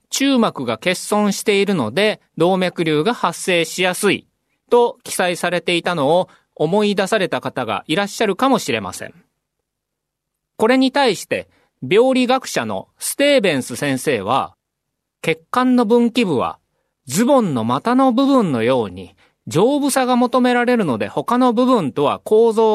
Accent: native